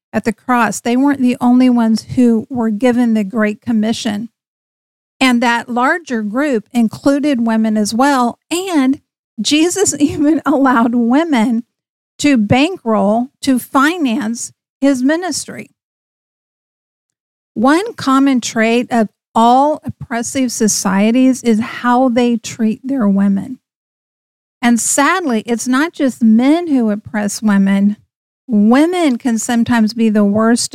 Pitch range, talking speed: 215-265 Hz, 120 wpm